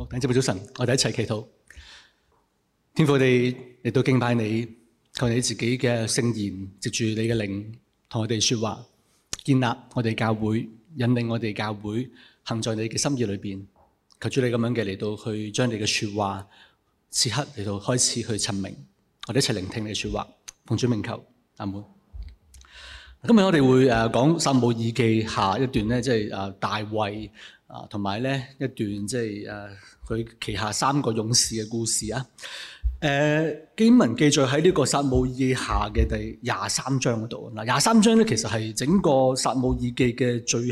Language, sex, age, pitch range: Chinese, male, 30-49, 110-135 Hz